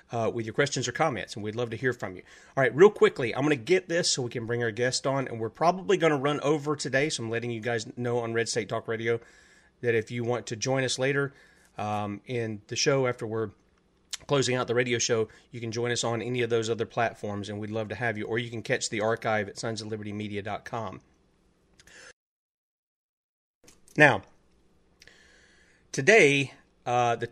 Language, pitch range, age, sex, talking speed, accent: English, 115-140 Hz, 30-49, male, 210 wpm, American